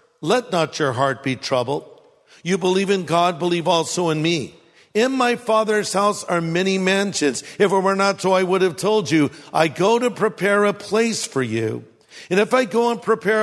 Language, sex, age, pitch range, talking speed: English, male, 50-69, 160-210 Hz, 200 wpm